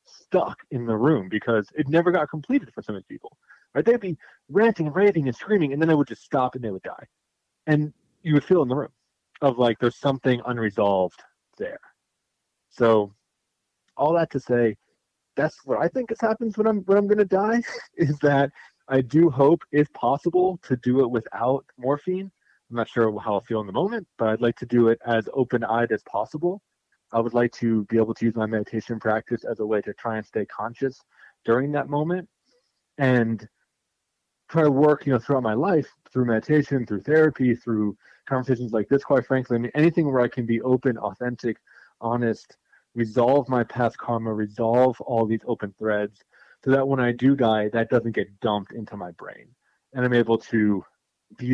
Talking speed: 195 wpm